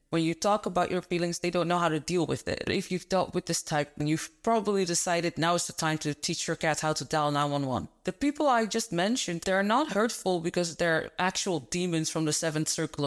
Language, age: English, 20-39